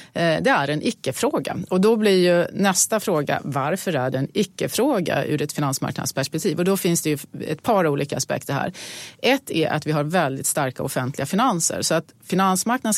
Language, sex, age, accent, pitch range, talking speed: Swedish, female, 30-49, native, 150-185 Hz, 185 wpm